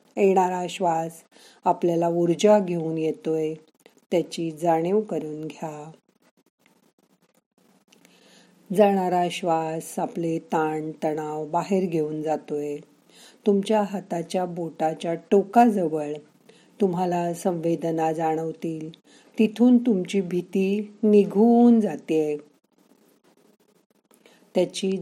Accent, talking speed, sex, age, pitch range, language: native, 65 wpm, female, 50-69, 165-210 Hz, Marathi